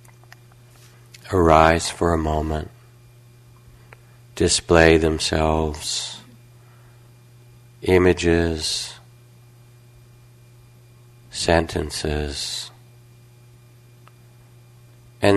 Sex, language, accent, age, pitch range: male, English, American, 50-69, 90-120 Hz